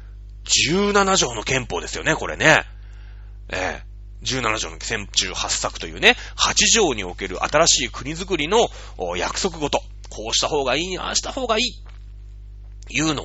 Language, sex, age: Japanese, male, 30-49